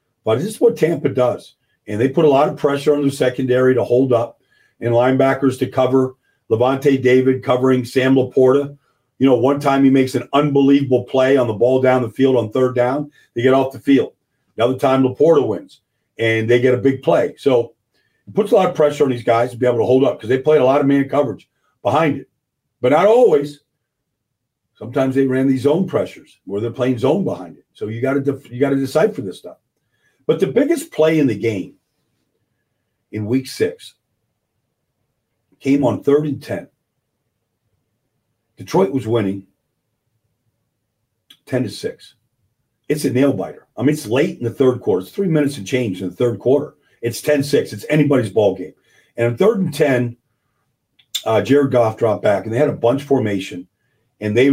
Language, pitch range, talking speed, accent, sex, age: English, 115-140 Hz, 195 wpm, American, male, 50-69